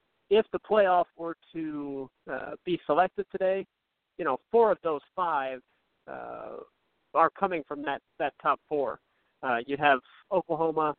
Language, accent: English, American